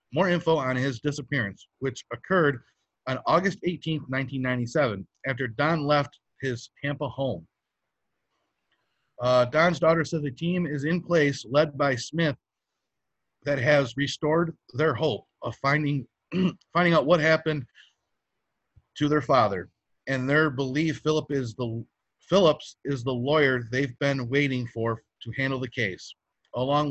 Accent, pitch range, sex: American, 130-160 Hz, male